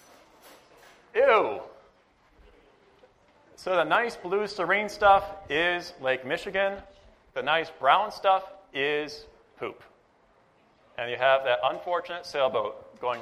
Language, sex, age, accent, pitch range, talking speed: English, male, 40-59, American, 125-185 Hz, 105 wpm